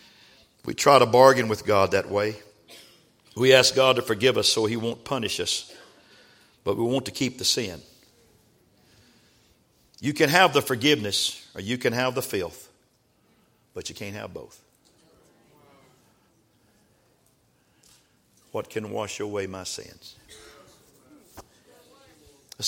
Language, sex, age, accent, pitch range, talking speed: English, male, 50-69, American, 100-120 Hz, 130 wpm